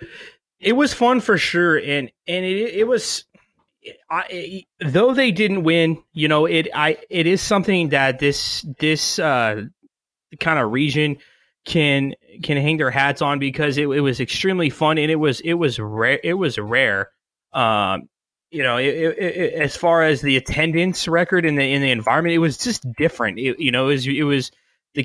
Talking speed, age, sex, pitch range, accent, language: 195 wpm, 20-39, male, 140-175 Hz, American, English